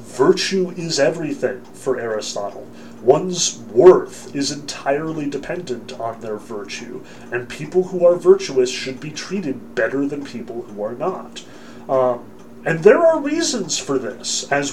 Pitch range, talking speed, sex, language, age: 125-185 Hz, 145 wpm, male, English, 30-49